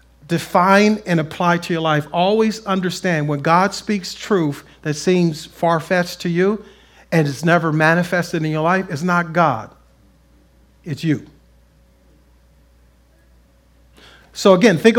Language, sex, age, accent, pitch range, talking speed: English, male, 40-59, American, 130-195 Hz, 130 wpm